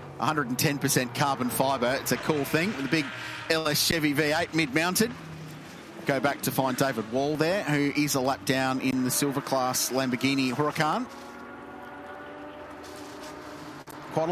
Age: 30-49